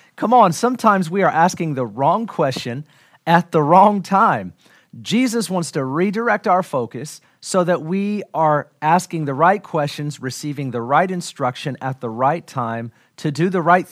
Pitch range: 125-165 Hz